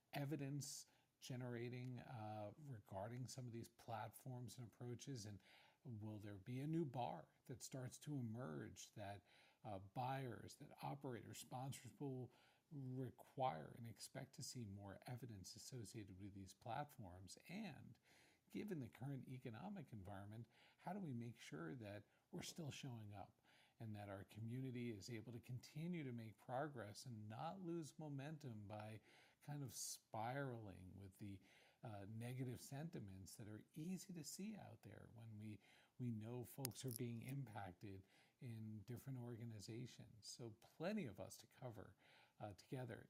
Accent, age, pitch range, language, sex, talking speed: American, 50-69, 105-135 Hz, English, male, 145 wpm